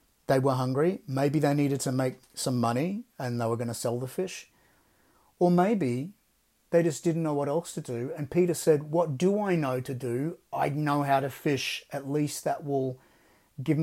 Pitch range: 125-145 Hz